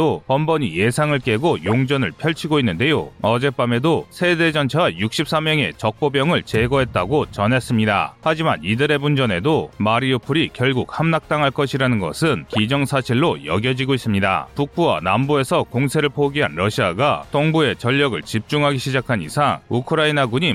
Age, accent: 30-49, native